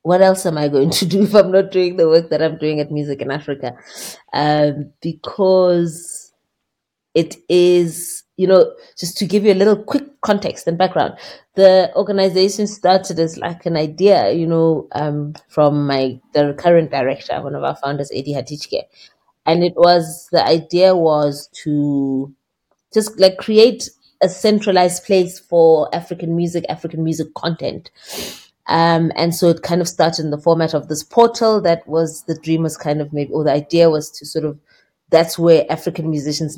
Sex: female